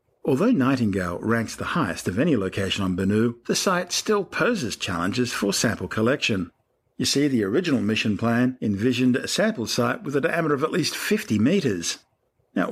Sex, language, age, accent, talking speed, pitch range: male, English, 50-69, Australian, 175 wpm, 105-135 Hz